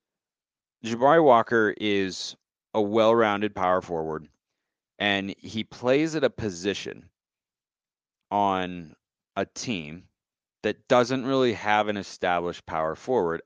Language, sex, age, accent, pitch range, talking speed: English, male, 30-49, American, 90-115 Hz, 105 wpm